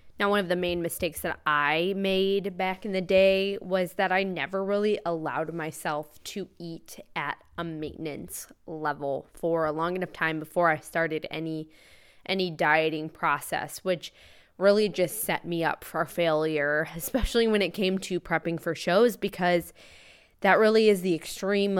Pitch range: 155-190 Hz